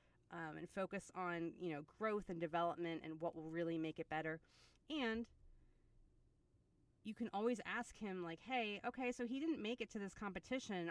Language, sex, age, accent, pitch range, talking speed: English, female, 30-49, American, 170-210 Hz, 180 wpm